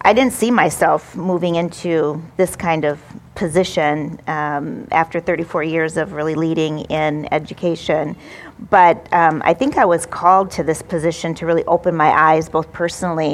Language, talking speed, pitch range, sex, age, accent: English, 160 wpm, 155-175 Hz, female, 40-59, American